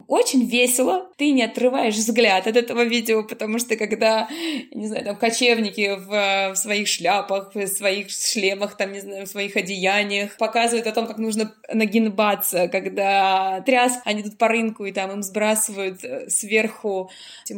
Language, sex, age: Russian, female, 20-39